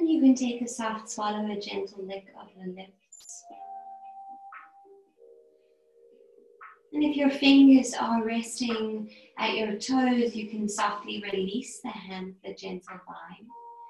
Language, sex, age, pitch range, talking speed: English, female, 20-39, 210-310 Hz, 135 wpm